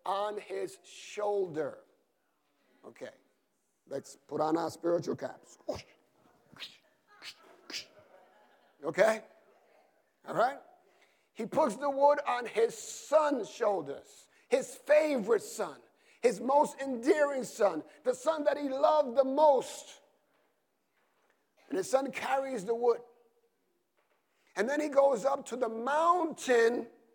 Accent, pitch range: American, 240-315 Hz